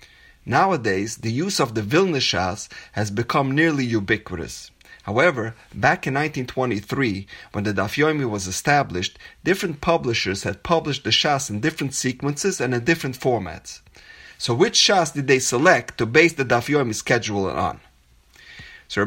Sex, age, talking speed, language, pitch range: male, 30-49, 145 wpm, English, 110-155 Hz